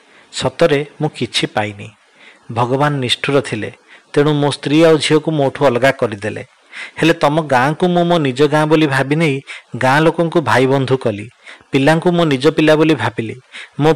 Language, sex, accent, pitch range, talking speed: English, male, Indian, 125-160 Hz, 170 wpm